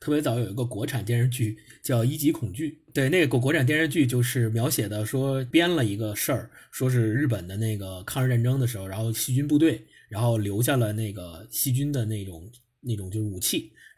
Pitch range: 110-135 Hz